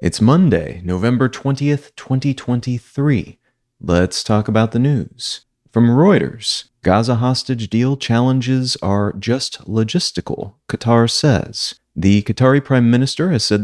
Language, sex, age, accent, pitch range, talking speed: English, male, 30-49, American, 105-130 Hz, 120 wpm